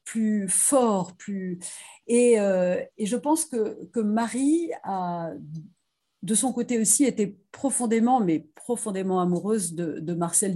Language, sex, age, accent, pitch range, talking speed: French, female, 50-69, French, 170-220 Hz, 135 wpm